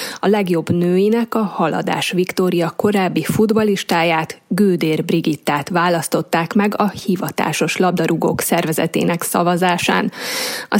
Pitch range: 170-210 Hz